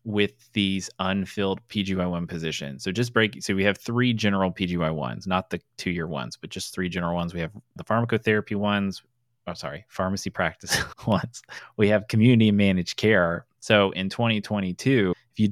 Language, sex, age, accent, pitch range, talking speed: English, male, 30-49, American, 90-110 Hz, 165 wpm